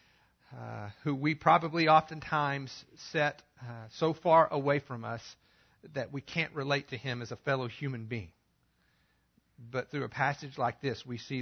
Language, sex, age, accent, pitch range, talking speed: English, male, 50-69, American, 110-145 Hz, 165 wpm